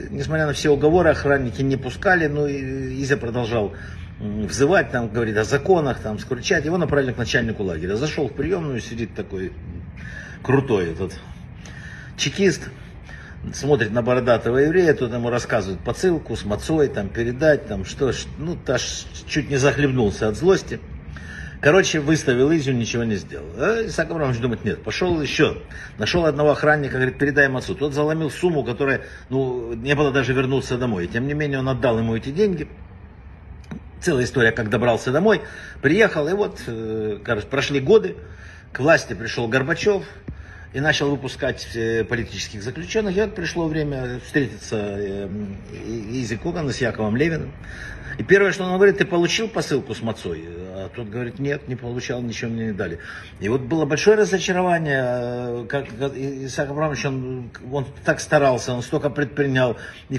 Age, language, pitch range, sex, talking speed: 60-79, Russian, 115-150 Hz, male, 155 wpm